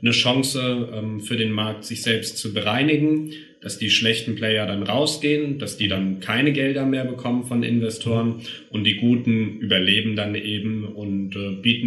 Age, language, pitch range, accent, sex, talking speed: 30-49, German, 100-120 Hz, German, male, 160 wpm